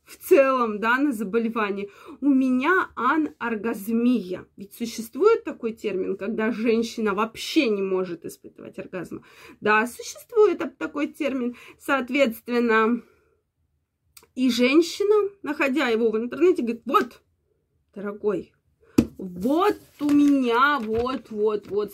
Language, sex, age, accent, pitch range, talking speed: Russian, female, 20-39, native, 220-295 Hz, 105 wpm